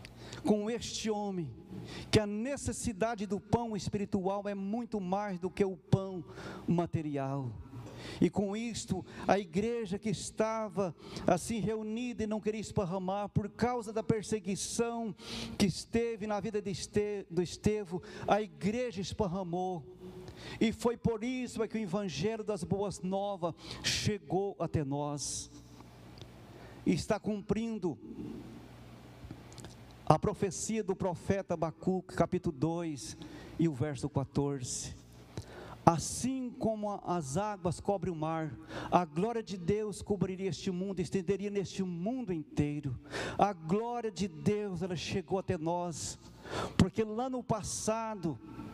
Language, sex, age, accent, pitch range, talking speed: Portuguese, male, 50-69, Brazilian, 170-215 Hz, 125 wpm